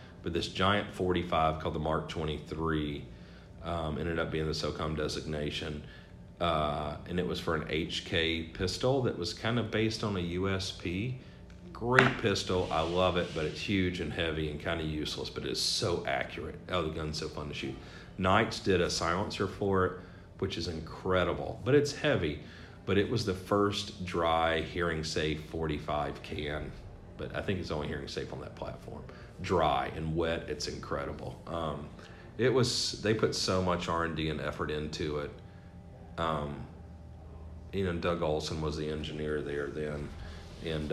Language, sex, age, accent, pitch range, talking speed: English, male, 40-59, American, 75-95 Hz, 175 wpm